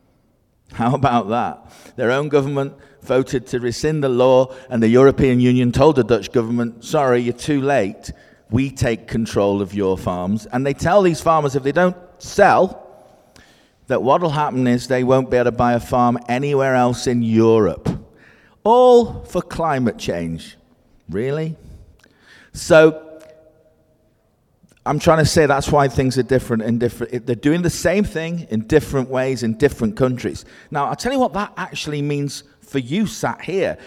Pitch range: 115-145 Hz